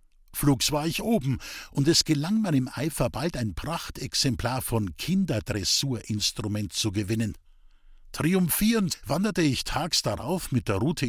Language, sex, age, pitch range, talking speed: German, male, 60-79, 110-155 Hz, 135 wpm